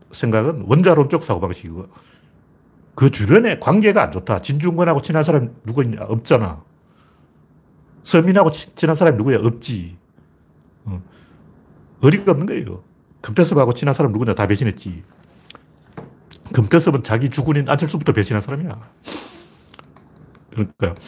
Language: Korean